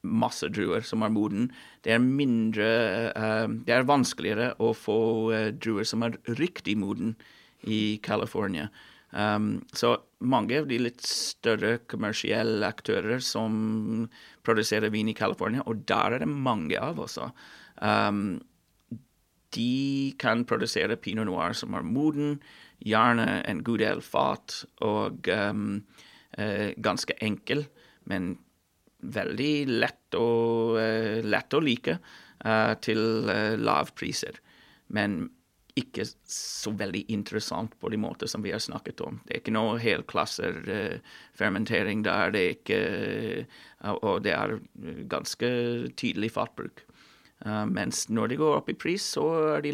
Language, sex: English, male